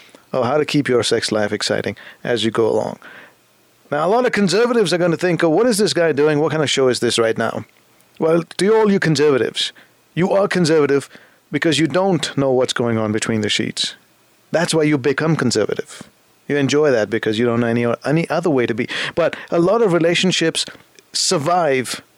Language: English